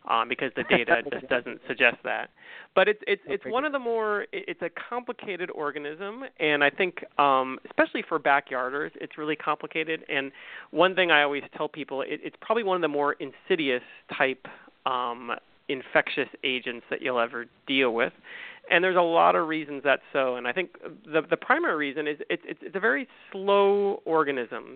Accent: American